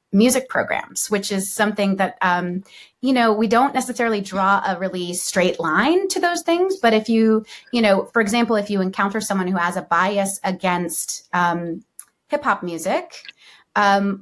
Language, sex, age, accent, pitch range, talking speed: English, female, 30-49, American, 180-215 Hz, 175 wpm